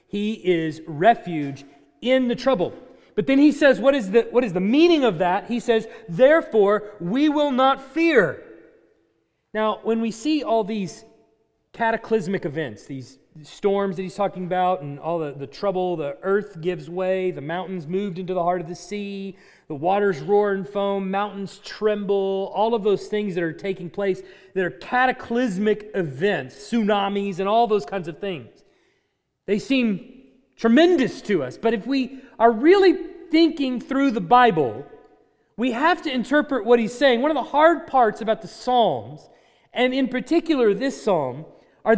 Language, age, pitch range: English, 30-49, 195-255 Hz